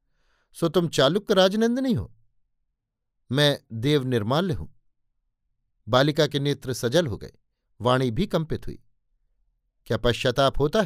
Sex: male